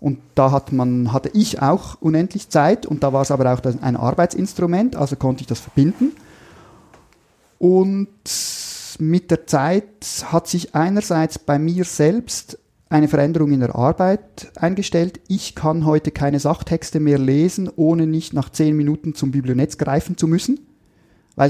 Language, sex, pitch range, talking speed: German, male, 140-175 Hz, 155 wpm